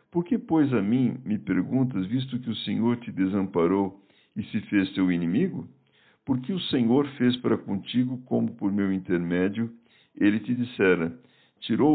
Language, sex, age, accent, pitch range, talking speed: Portuguese, male, 60-79, Brazilian, 100-130 Hz, 160 wpm